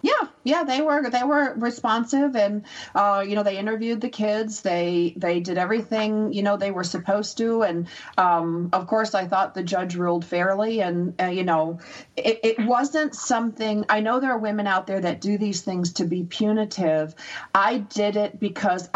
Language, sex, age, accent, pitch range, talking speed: English, female, 40-59, American, 175-215 Hz, 195 wpm